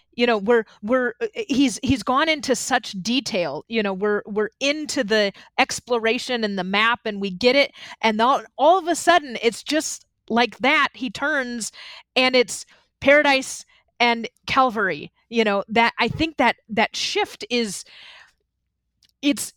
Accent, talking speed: American, 155 wpm